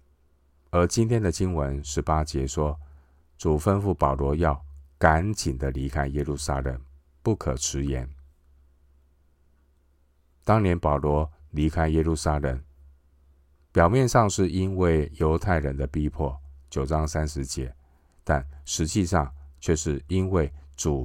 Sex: male